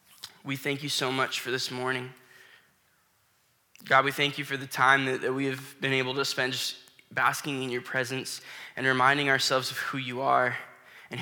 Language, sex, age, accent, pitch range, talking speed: English, male, 10-29, American, 130-150 Hz, 195 wpm